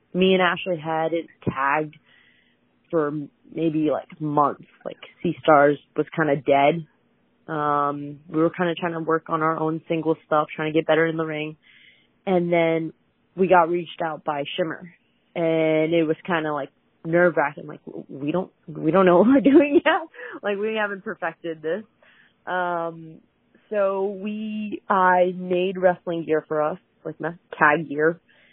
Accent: American